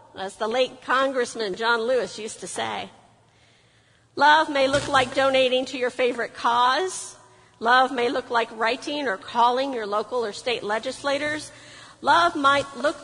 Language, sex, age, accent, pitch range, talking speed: English, female, 50-69, American, 210-275 Hz, 150 wpm